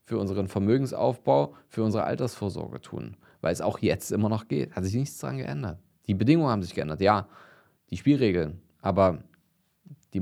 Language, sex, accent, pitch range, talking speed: German, male, German, 100-145 Hz, 170 wpm